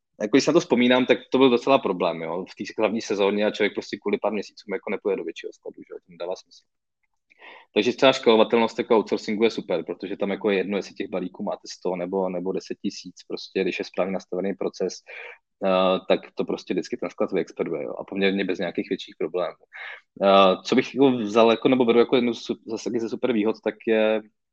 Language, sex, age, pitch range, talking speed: Czech, male, 20-39, 100-115 Hz, 210 wpm